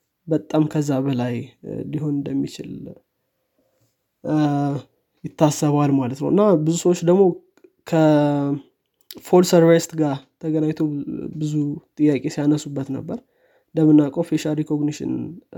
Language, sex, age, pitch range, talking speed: Amharic, male, 20-39, 145-165 Hz, 90 wpm